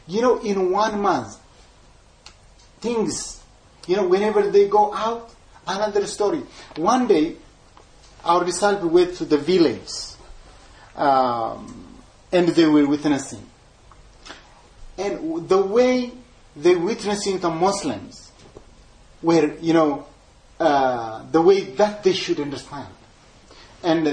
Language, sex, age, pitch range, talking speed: English, male, 30-49, 135-215 Hz, 110 wpm